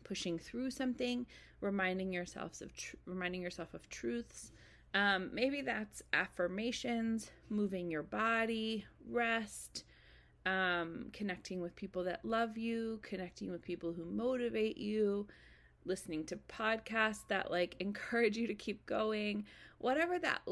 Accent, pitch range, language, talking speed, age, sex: American, 180-230 Hz, English, 130 wpm, 30-49, female